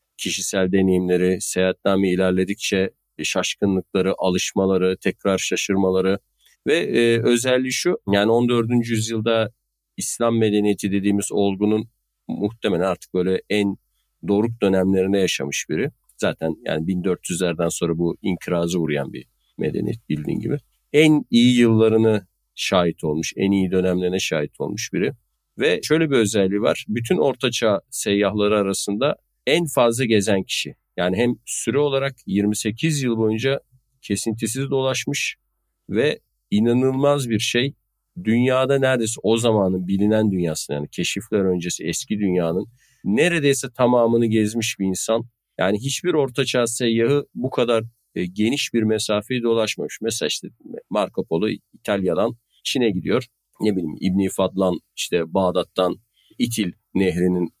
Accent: native